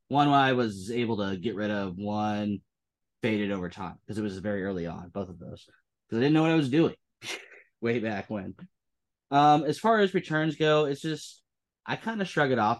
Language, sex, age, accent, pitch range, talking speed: English, male, 20-39, American, 105-140 Hz, 215 wpm